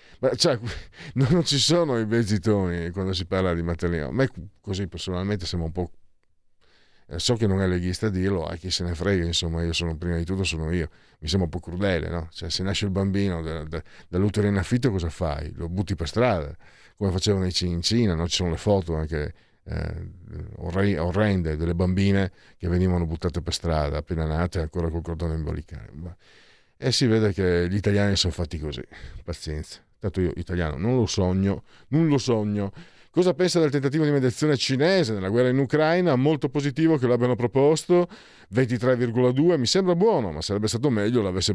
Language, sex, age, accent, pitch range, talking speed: Italian, male, 50-69, native, 90-130 Hz, 190 wpm